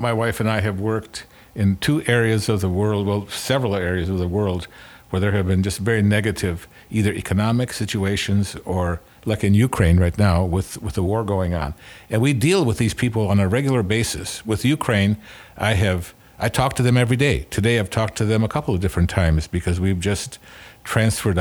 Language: English